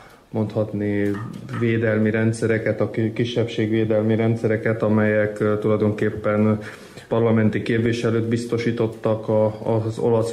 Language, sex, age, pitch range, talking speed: Hungarian, male, 20-39, 105-115 Hz, 75 wpm